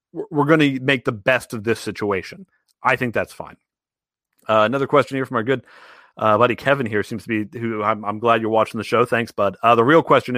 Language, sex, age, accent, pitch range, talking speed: English, male, 30-49, American, 105-130 Hz, 235 wpm